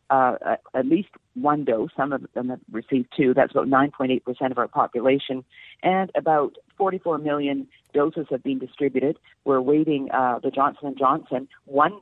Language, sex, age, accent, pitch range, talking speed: English, female, 50-69, American, 130-145 Hz, 165 wpm